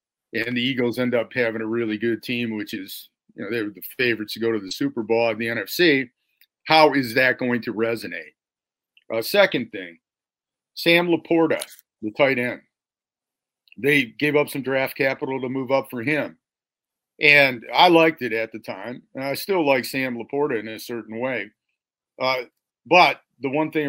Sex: male